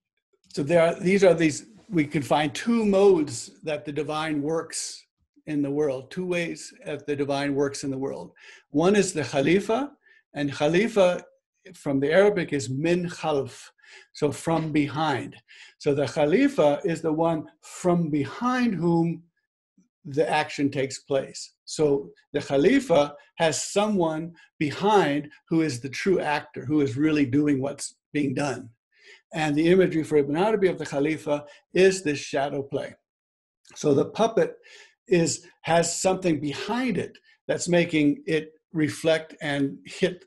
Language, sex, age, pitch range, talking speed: English, male, 60-79, 145-195 Hz, 145 wpm